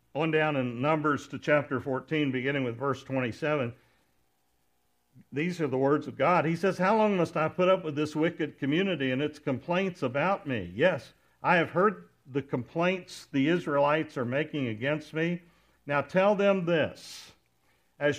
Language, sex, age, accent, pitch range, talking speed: English, male, 60-79, American, 130-170 Hz, 170 wpm